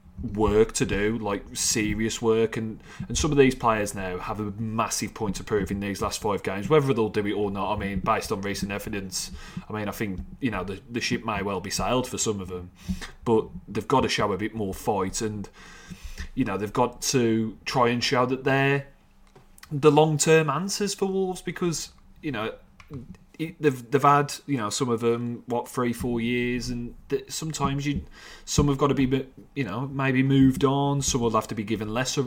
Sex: male